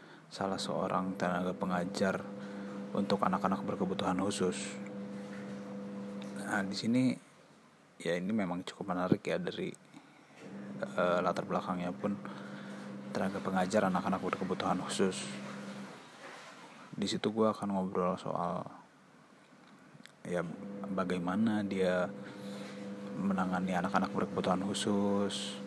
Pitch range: 95-100 Hz